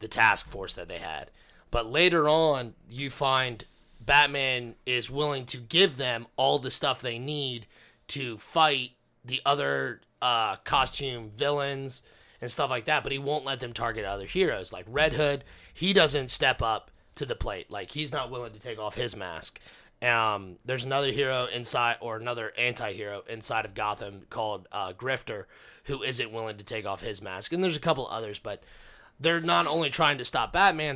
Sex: male